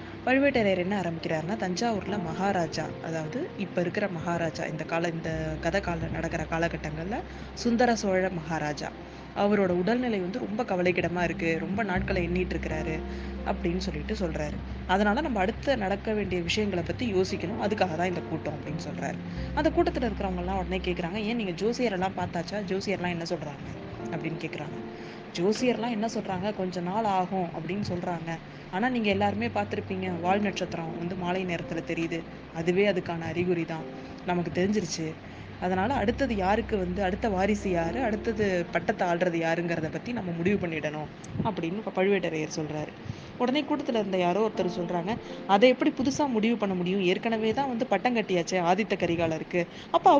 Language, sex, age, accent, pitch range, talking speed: Tamil, female, 20-39, native, 165-210 Hz, 145 wpm